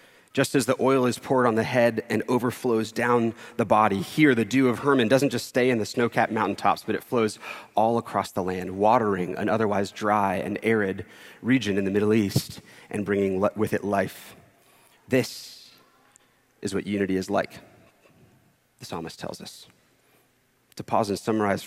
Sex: male